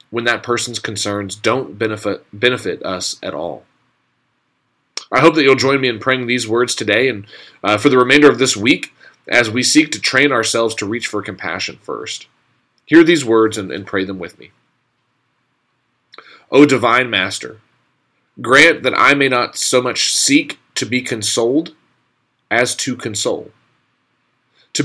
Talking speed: 160 wpm